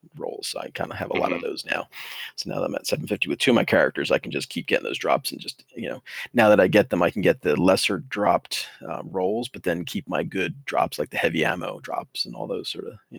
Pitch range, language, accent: 105-125 Hz, English, American